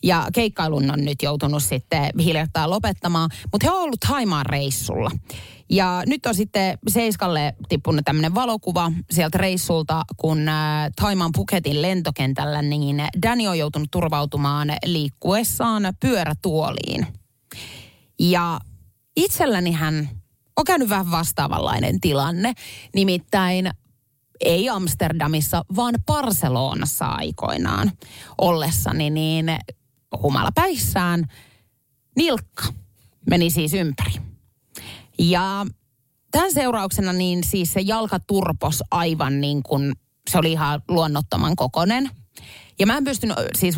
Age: 30-49